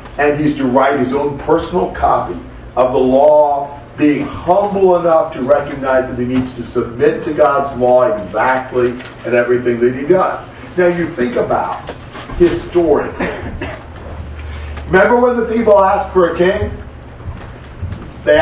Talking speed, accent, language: 145 wpm, American, English